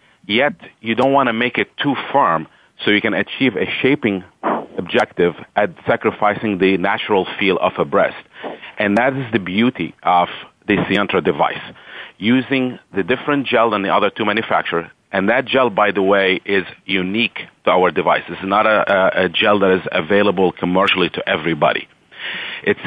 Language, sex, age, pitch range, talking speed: English, male, 40-59, 95-115 Hz, 170 wpm